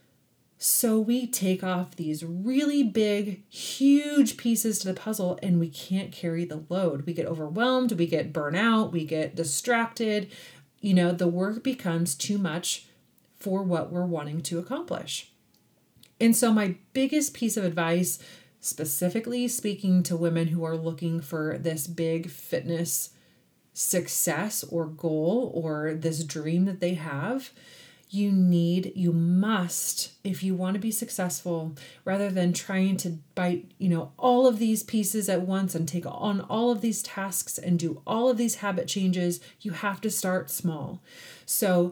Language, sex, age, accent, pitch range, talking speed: English, female, 30-49, American, 165-215 Hz, 155 wpm